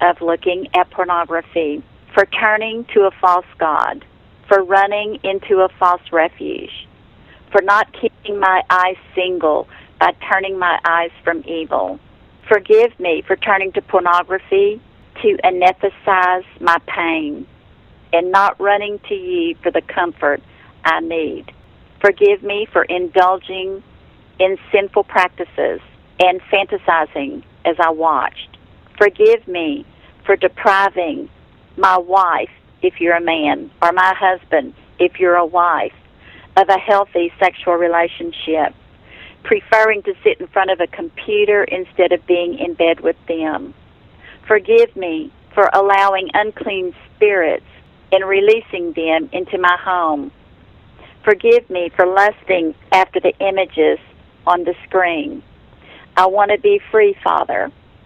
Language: English